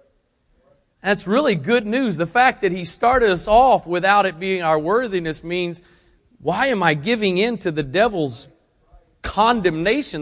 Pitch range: 155-215 Hz